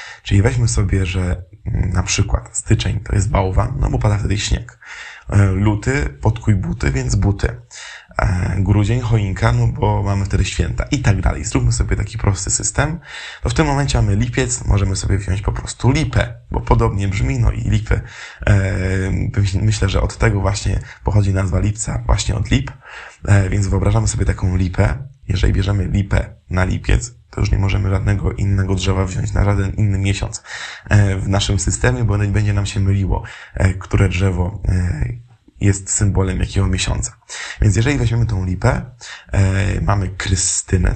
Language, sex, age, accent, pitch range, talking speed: Polish, male, 20-39, native, 95-115 Hz, 160 wpm